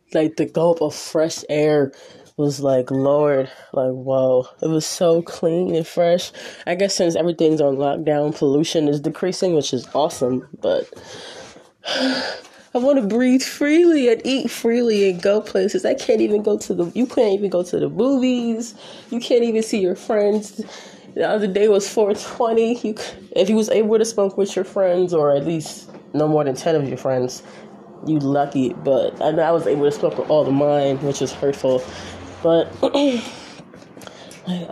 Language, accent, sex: English, American, female